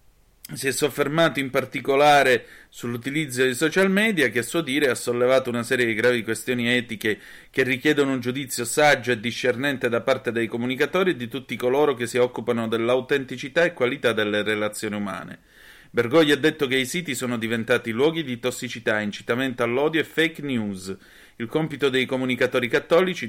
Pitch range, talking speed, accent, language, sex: 115-145 Hz, 170 wpm, native, Italian, male